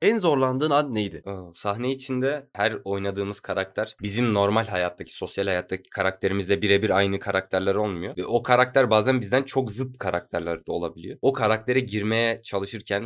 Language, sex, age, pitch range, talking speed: Turkish, male, 20-39, 100-125 Hz, 155 wpm